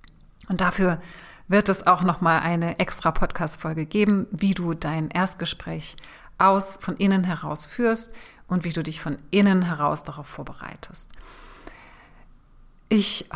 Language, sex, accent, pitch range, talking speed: German, female, German, 170-195 Hz, 130 wpm